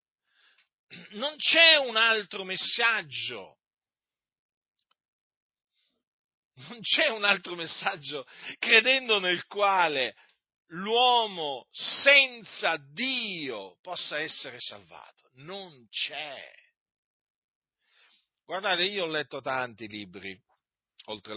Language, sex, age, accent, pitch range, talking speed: Italian, male, 40-59, native, 105-175 Hz, 80 wpm